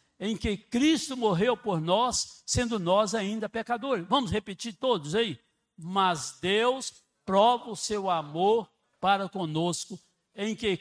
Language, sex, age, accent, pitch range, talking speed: Portuguese, male, 60-79, Brazilian, 195-260 Hz, 135 wpm